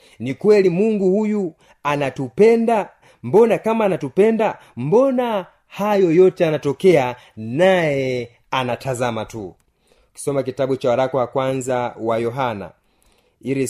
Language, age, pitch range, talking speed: Swahili, 30-49, 120-165 Hz, 105 wpm